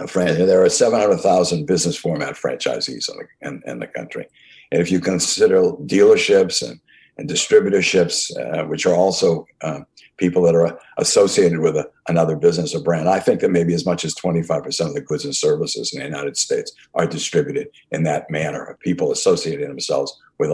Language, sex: English, male